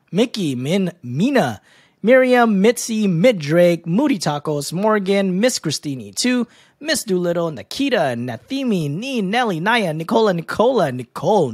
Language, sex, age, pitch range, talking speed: English, male, 20-39, 160-250 Hz, 120 wpm